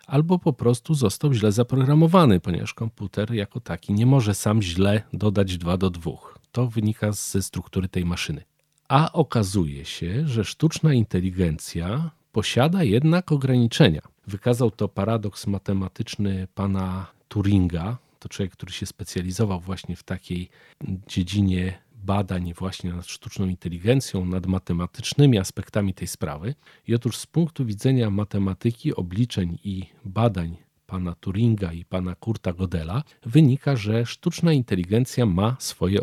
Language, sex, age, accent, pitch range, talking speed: Polish, male, 40-59, native, 95-125 Hz, 130 wpm